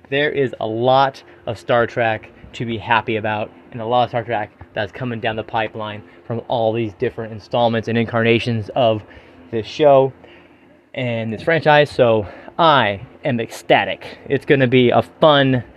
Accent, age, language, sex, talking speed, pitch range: American, 30-49, English, male, 170 wpm, 110-135 Hz